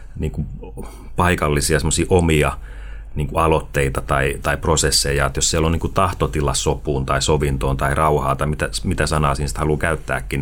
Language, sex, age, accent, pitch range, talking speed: Finnish, male, 30-49, native, 75-90 Hz, 155 wpm